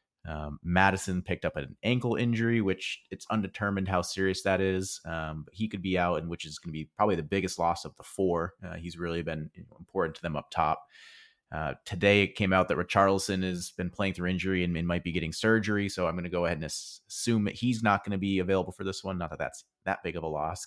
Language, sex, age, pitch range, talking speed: English, male, 30-49, 85-100 Hz, 250 wpm